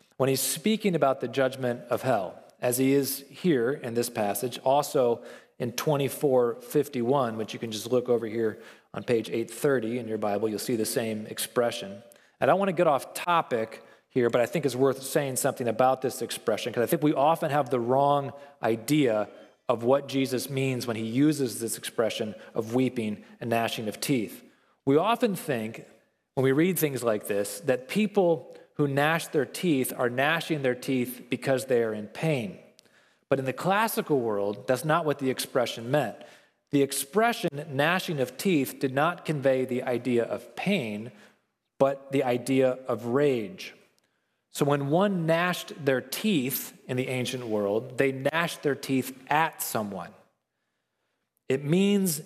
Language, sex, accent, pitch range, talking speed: English, male, American, 120-150 Hz, 170 wpm